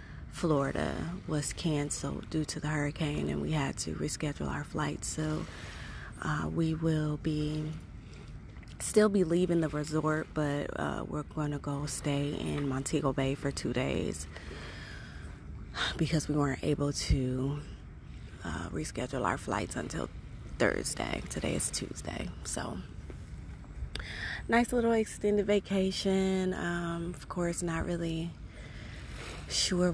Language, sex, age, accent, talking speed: English, female, 20-39, American, 125 wpm